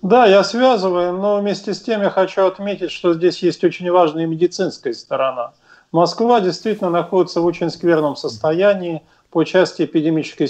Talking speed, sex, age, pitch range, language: 155 wpm, male, 40-59, 150-185 Hz, Russian